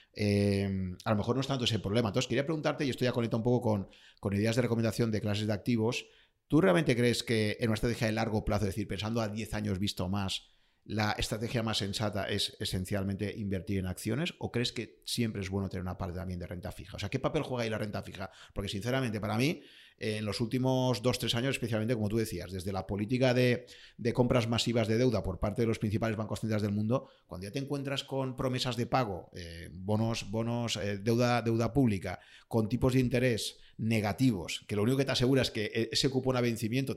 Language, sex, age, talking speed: Spanish, male, 30-49, 230 wpm